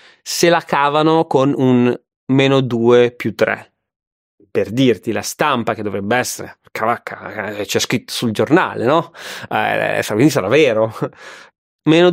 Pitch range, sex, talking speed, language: 115-135 Hz, male, 135 wpm, Italian